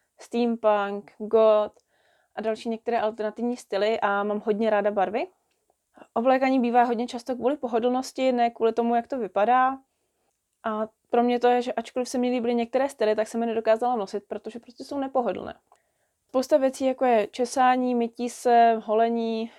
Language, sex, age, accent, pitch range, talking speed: Czech, female, 20-39, native, 220-255 Hz, 160 wpm